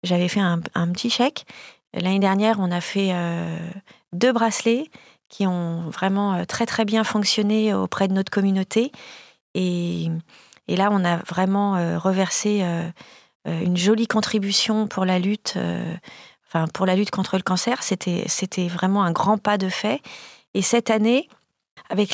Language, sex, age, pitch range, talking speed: French, female, 40-59, 185-220 Hz, 165 wpm